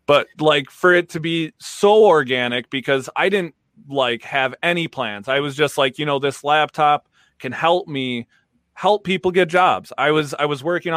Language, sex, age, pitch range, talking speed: English, male, 20-39, 125-160 Hz, 190 wpm